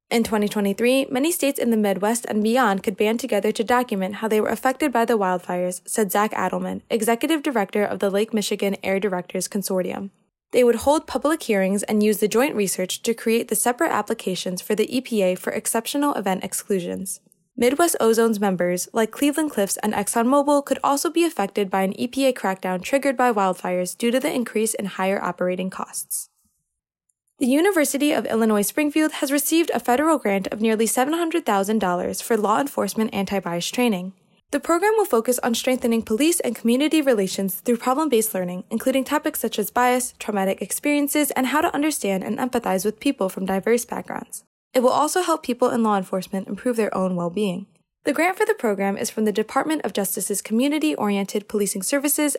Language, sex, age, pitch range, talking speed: English, female, 10-29, 200-260 Hz, 180 wpm